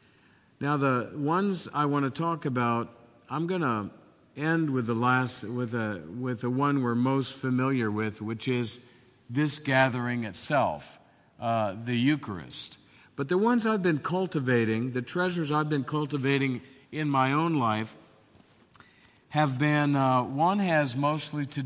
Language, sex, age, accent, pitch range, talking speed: English, male, 50-69, American, 125-155 Hz, 150 wpm